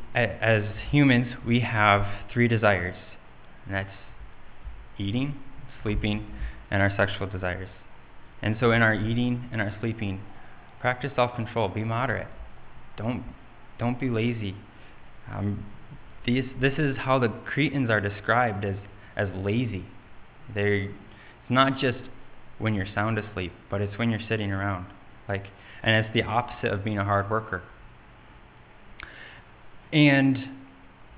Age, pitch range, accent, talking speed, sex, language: 20-39, 100-120 Hz, American, 130 wpm, male, English